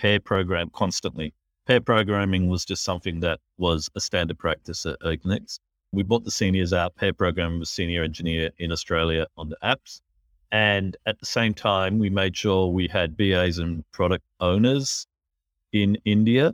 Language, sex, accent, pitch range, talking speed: English, male, Australian, 85-105 Hz, 165 wpm